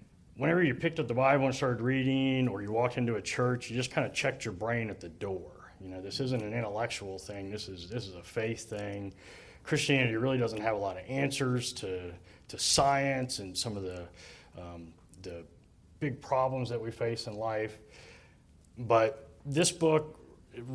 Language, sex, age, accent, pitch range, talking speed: English, male, 30-49, American, 100-135 Hz, 195 wpm